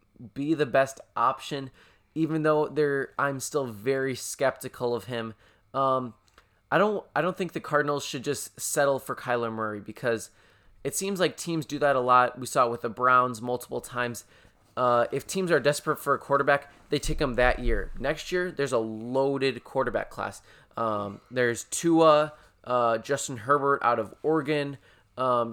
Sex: male